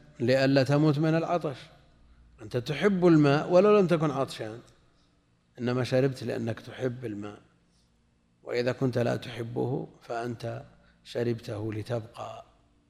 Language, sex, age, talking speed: Arabic, male, 50-69, 105 wpm